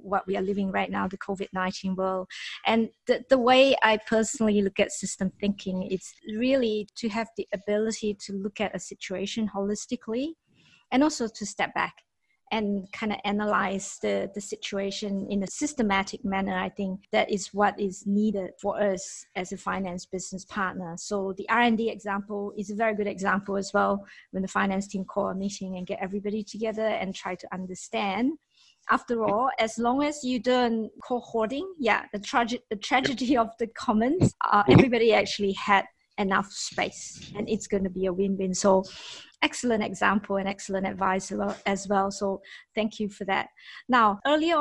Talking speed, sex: 175 wpm, female